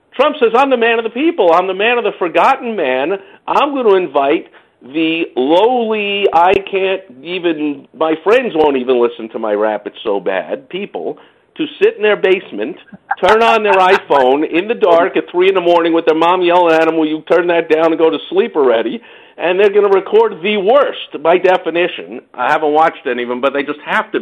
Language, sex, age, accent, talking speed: English, male, 50-69, American, 220 wpm